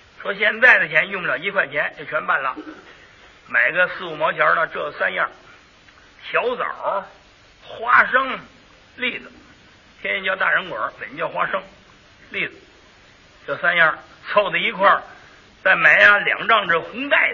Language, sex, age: Chinese, male, 50-69